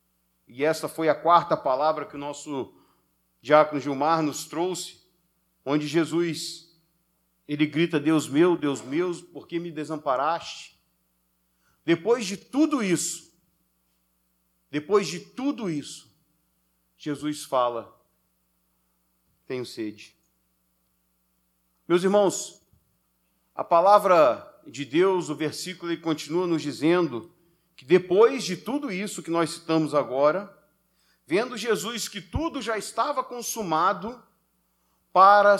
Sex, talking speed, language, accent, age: male, 110 wpm, Portuguese, Brazilian, 50-69